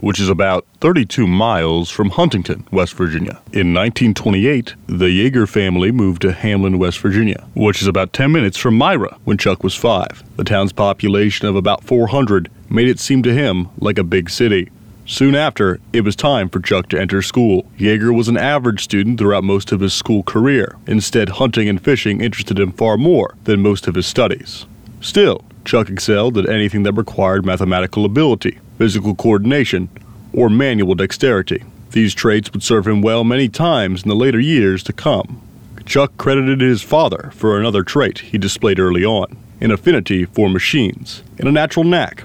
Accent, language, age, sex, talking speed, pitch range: American, English, 30-49, male, 180 wpm, 100-120 Hz